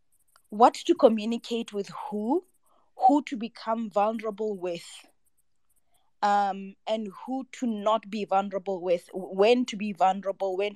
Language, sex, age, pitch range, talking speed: English, female, 20-39, 200-240 Hz, 130 wpm